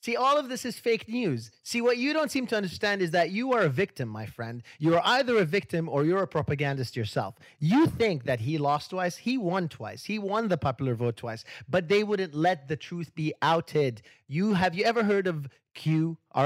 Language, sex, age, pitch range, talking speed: English, male, 30-49, 140-190 Hz, 230 wpm